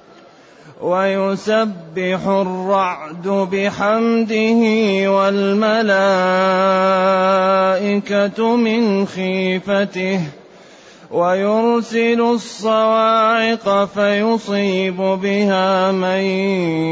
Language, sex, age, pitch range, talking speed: Arabic, male, 30-49, 185-205 Hz, 40 wpm